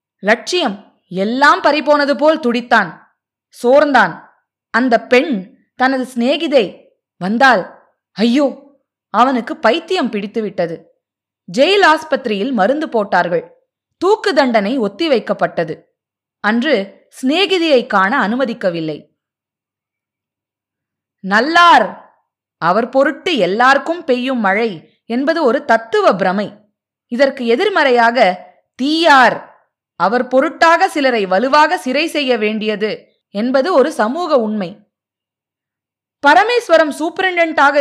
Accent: native